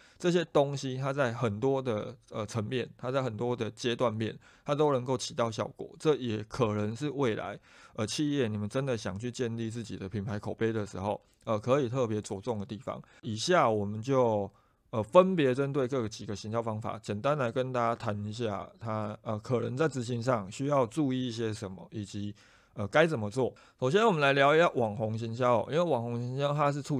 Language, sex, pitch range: Chinese, male, 110-135 Hz